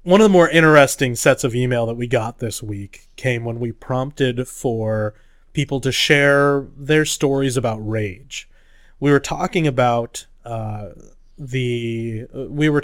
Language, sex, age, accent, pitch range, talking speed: English, male, 30-49, American, 110-140 Hz, 155 wpm